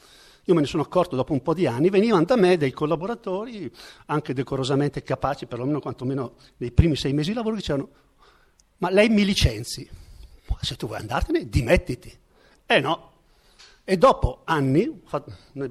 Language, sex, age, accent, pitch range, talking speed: Italian, male, 50-69, native, 135-195 Hz, 175 wpm